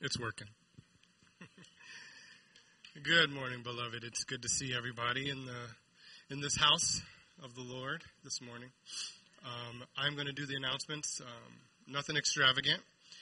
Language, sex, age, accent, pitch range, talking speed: English, male, 30-49, American, 120-145 Hz, 135 wpm